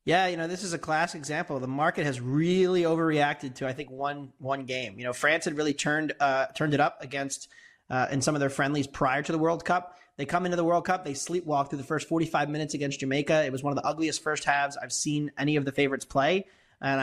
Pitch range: 140-160 Hz